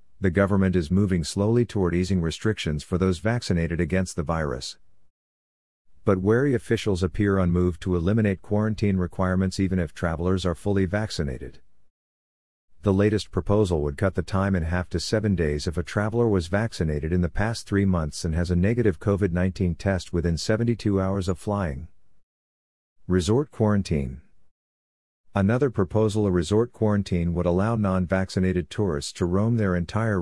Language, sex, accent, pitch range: English, male, American, 85-100 Hz